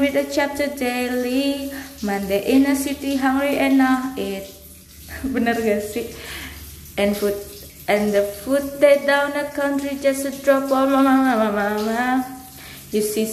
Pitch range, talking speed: 220-280 Hz, 150 wpm